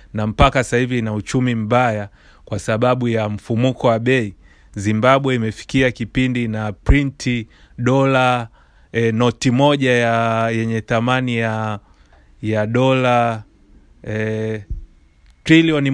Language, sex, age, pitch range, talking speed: Swahili, male, 30-49, 110-130 Hz, 115 wpm